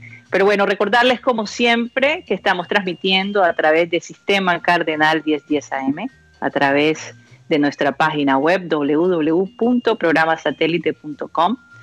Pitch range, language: 155-200 Hz, Spanish